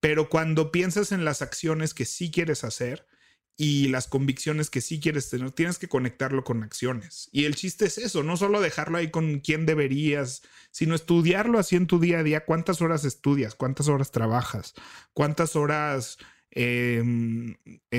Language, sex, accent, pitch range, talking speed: Spanish, male, Mexican, 135-170 Hz, 170 wpm